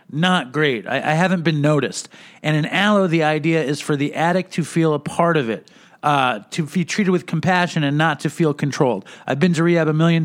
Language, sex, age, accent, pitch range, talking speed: English, male, 40-59, American, 155-200 Hz, 230 wpm